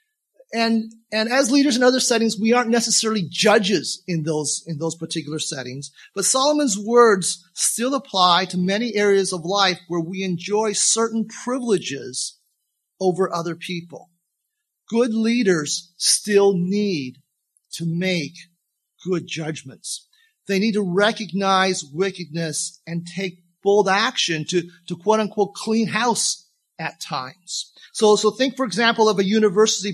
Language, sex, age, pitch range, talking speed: English, male, 40-59, 175-220 Hz, 135 wpm